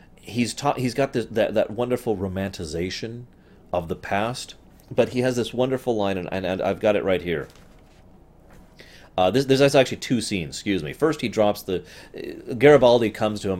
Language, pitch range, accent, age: English, 90-120 Hz, American, 30-49